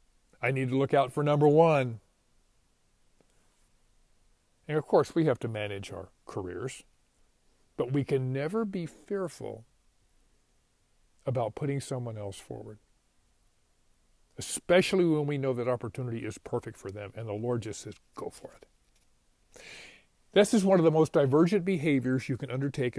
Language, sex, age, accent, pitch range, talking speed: English, male, 50-69, American, 120-165 Hz, 150 wpm